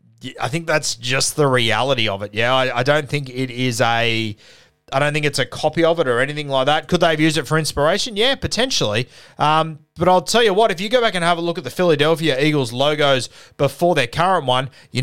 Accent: Australian